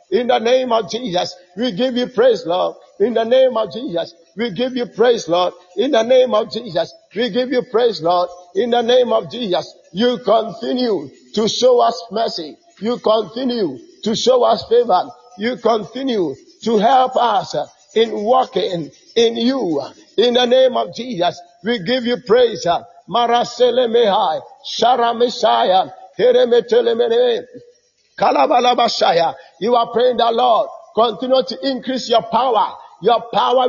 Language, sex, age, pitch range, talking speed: English, male, 50-69, 220-260 Hz, 140 wpm